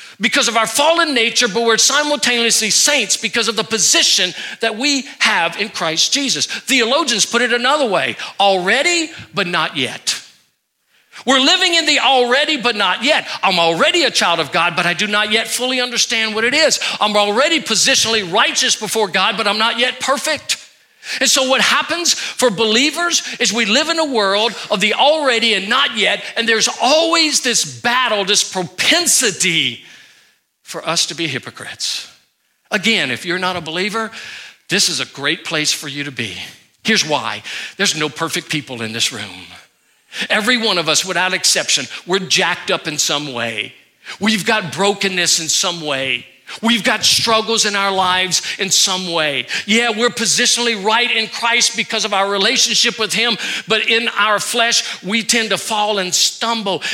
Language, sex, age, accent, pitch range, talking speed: English, male, 50-69, American, 185-240 Hz, 175 wpm